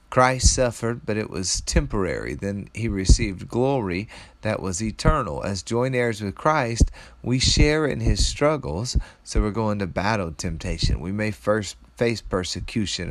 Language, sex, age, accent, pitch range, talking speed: English, male, 40-59, American, 100-125 Hz, 155 wpm